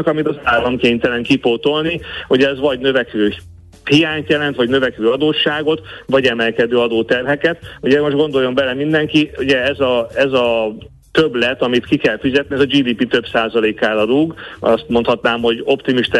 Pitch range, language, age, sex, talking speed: 115-135 Hz, Hungarian, 30-49, male, 155 wpm